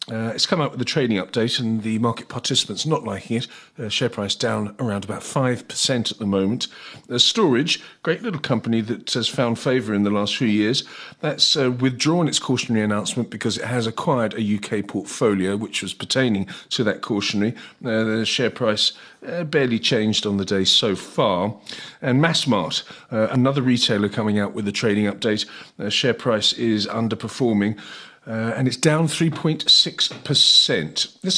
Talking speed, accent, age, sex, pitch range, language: 175 wpm, British, 40-59, male, 110-145 Hz, English